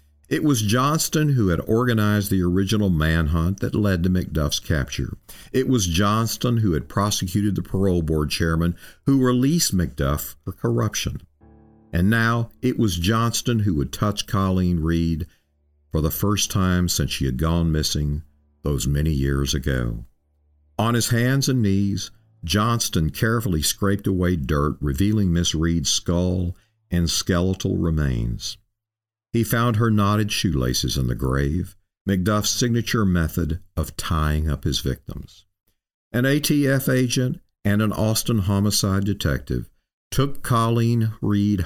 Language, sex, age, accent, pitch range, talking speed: English, male, 50-69, American, 80-110 Hz, 140 wpm